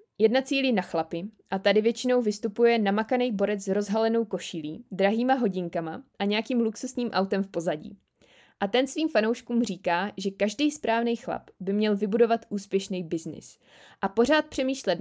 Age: 20-39